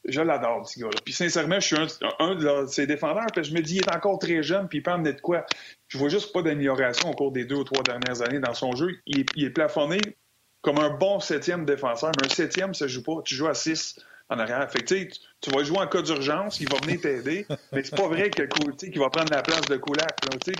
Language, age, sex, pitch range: French, 30-49, male, 140-185 Hz